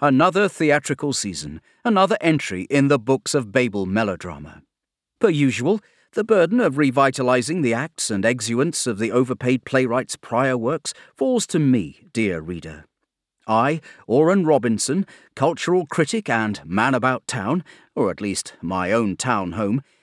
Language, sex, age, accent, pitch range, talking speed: English, male, 40-59, British, 115-160 Hz, 145 wpm